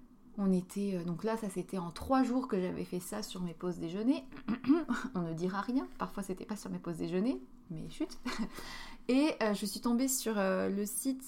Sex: female